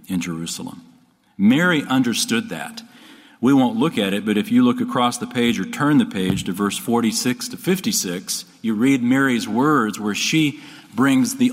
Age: 40-59